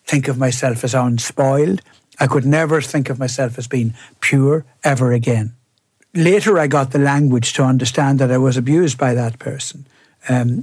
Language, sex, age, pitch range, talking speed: English, male, 60-79, 130-155 Hz, 175 wpm